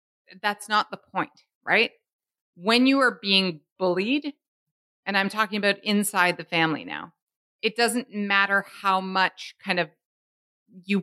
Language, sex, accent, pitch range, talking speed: English, female, American, 175-225 Hz, 140 wpm